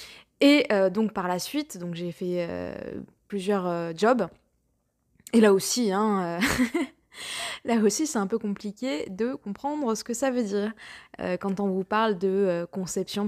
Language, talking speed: French, 175 wpm